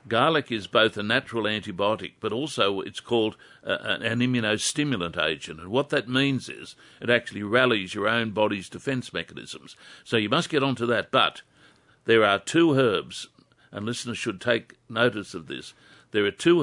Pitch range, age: 105-125 Hz, 60-79